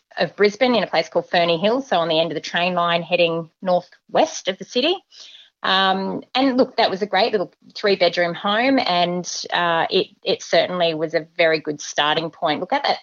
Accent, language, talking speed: Australian, English, 205 wpm